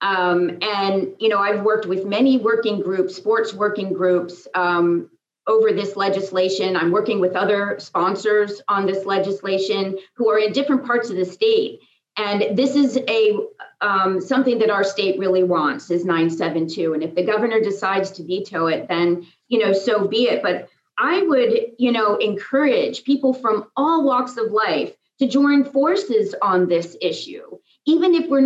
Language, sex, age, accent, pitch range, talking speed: English, female, 40-59, American, 195-255 Hz, 170 wpm